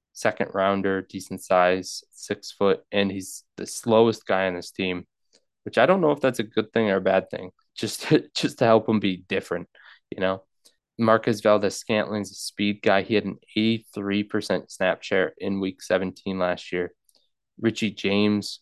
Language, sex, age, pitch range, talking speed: English, male, 20-39, 95-110 Hz, 175 wpm